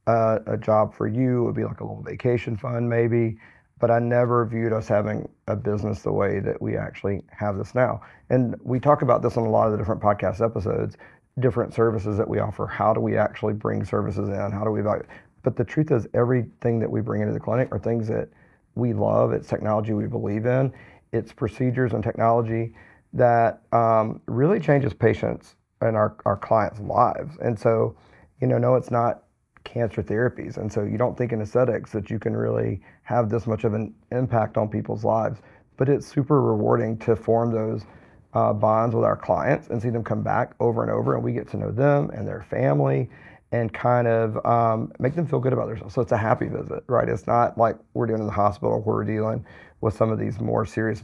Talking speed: 215 wpm